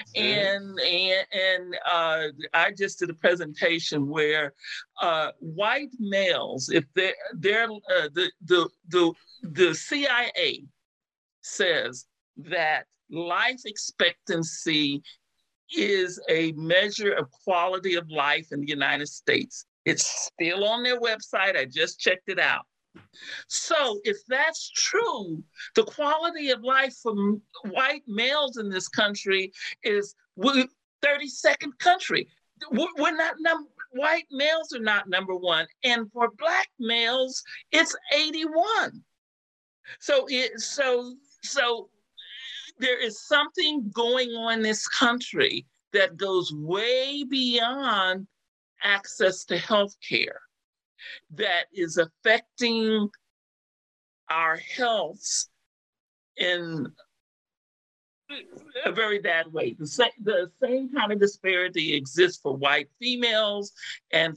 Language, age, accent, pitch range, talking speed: English, 50-69, American, 180-285 Hz, 110 wpm